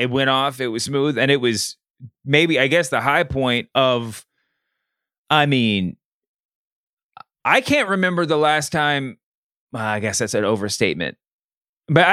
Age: 30-49